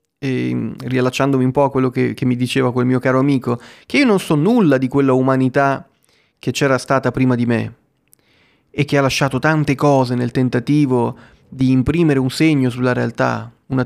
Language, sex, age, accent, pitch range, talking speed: Italian, male, 30-49, native, 130-155 Hz, 185 wpm